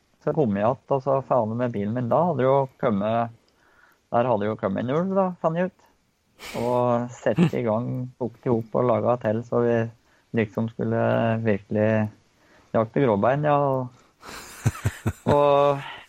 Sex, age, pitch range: male, 20-39, 110-135 Hz